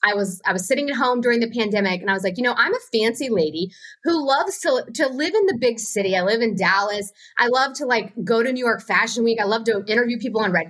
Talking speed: 280 wpm